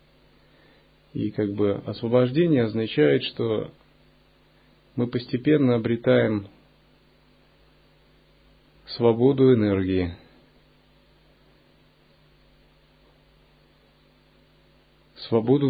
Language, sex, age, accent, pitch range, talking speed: Russian, male, 30-49, native, 100-120 Hz, 45 wpm